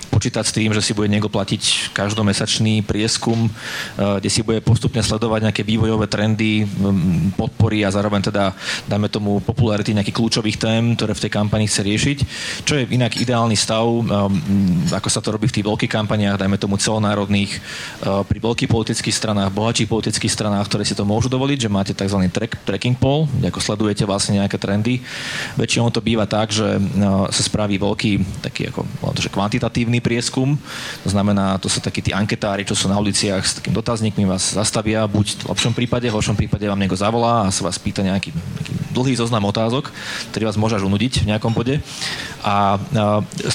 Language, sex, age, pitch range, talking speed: Slovak, male, 30-49, 100-115 Hz, 180 wpm